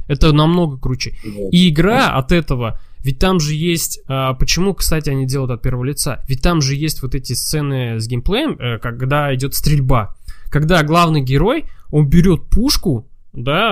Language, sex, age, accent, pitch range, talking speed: Russian, male, 20-39, native, 125-165 Hz, 160 wpm